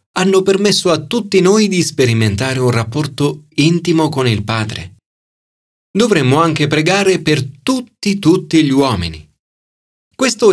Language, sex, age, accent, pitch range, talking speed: Italian, male, 40-59, native, 110-165 Hz, 125 wpm